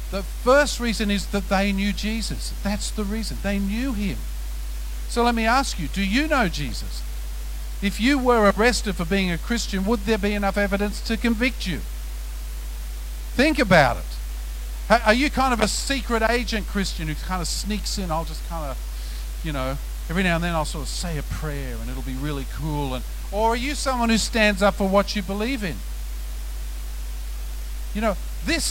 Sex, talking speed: male, 190 wpm